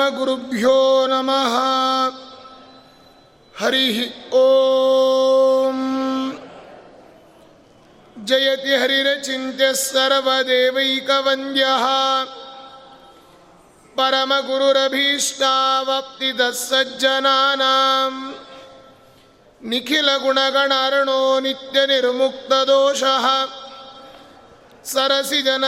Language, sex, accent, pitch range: Kannada, male, native, 265-275 Hz